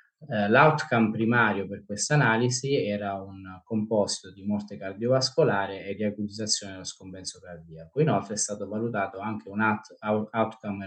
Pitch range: 95-110 Hz